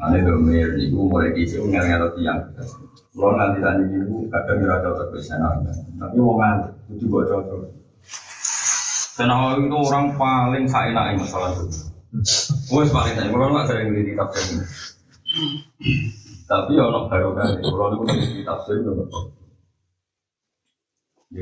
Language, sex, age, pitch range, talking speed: Indonesian, male, 30-49, 85-115 Hz, 40 wpm